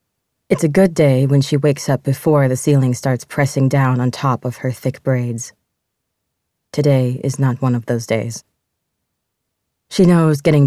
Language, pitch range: English, 130-145 Hz